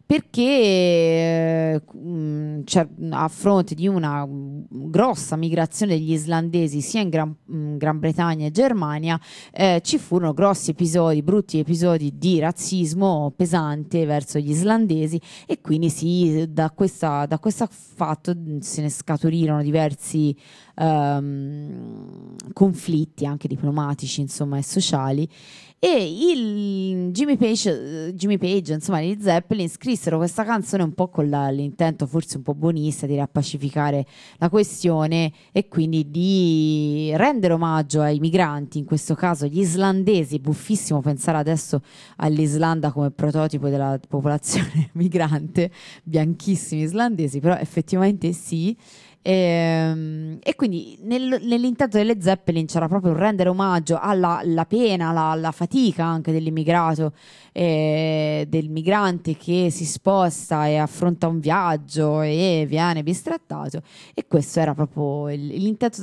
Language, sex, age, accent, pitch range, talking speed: Italian, female, 20-39, native, 155-180 Hz, 125 wpm